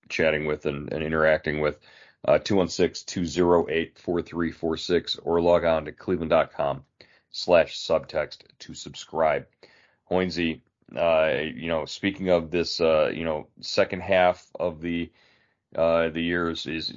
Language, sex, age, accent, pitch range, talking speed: English, male, 40-59, American, 85-95 Hz, 125 wpm